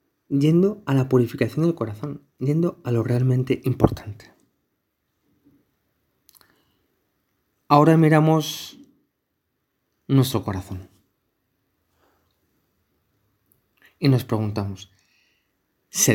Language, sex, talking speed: Spanish, male, 70 wpm